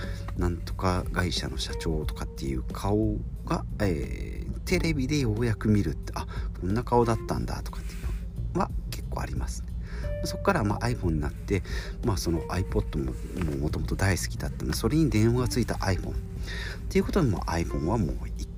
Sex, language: male, Japanese